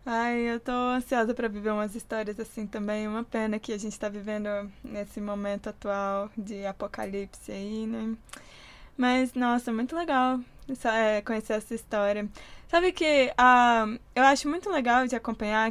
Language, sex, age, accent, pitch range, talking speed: Portuguese, female, 10-29, Brazilian, 215-260 Hz, 155 wpm